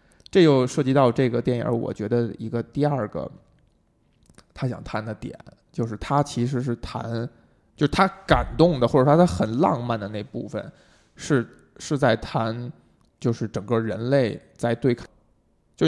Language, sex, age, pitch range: Chinese, male, 20-39, 115-140 Hz